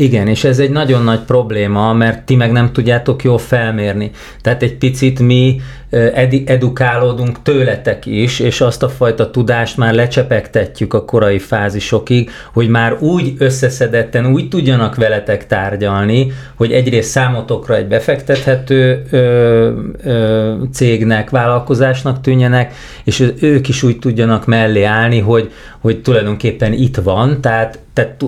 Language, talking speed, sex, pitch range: Hungarian, 130 wpm, male, 105-125 Hz